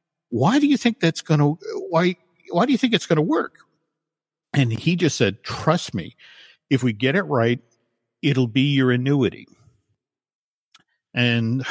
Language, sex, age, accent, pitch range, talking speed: English, male, 50-69, American, 125-170 Hz, 165 wpm